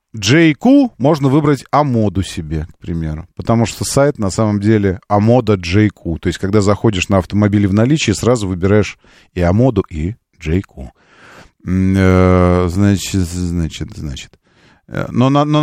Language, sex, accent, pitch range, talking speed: Russian, male, native, 95-145 Hz, 130 wpm